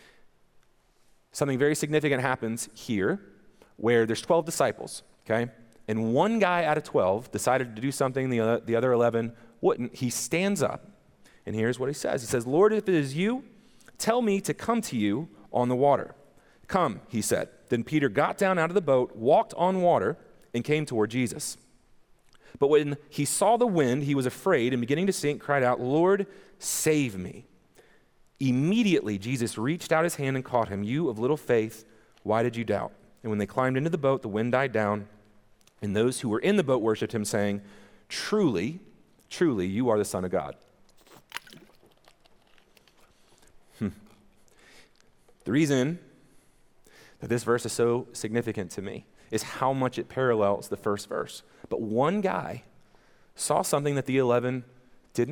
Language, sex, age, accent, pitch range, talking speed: English, male, 40-59, American, 115-150 Hz, 170 wpm